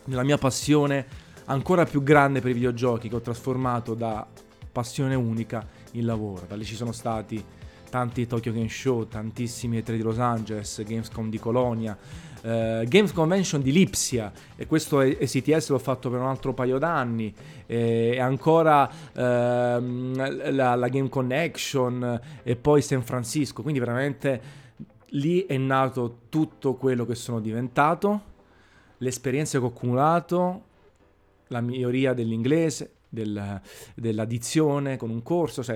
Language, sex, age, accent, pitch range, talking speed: Italian, male, 20-39, native, 115-135 Hz, 140 wpm